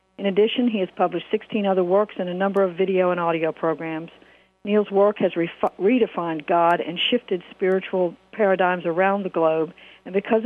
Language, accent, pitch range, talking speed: English, American, 170-200 Hz, 170 wpm